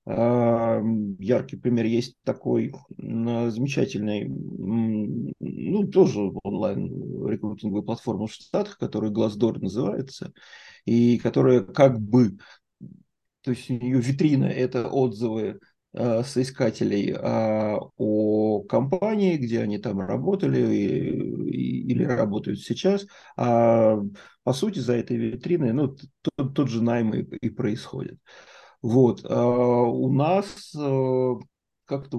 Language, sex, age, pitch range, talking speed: Russian, male, 30-49, 115-135 Hz, 115 wpm